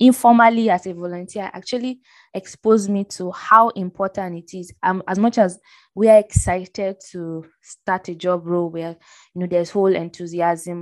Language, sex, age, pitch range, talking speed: English, female, 20-39, 175-205 Hz, 165 wpm